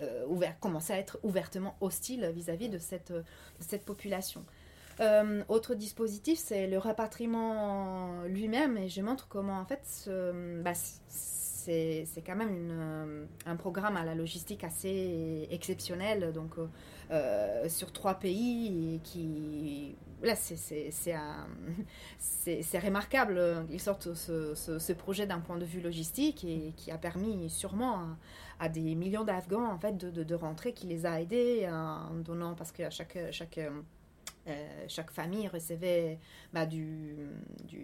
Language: French